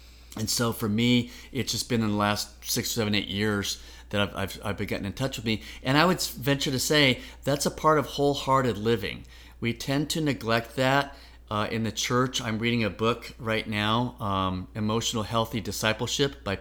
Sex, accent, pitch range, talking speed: male, American, 95-120 Hz, 200 wpm